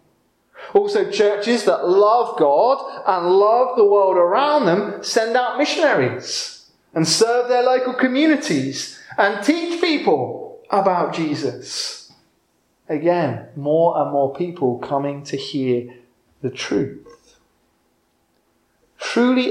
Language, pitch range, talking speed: English, 125-205 Hz, 110 wpm